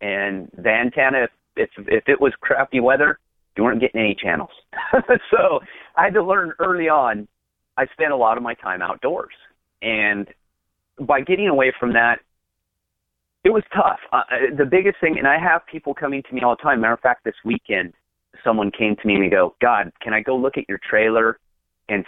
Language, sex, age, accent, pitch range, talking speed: English, male, 30-49, American, 95-135 Hz, 200 wpm